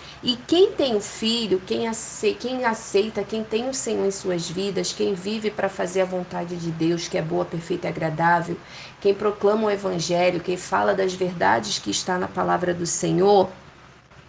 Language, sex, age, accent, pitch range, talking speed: Portuguese, female, 30-49, Brazilian, 185-215 Hz, 175 wpm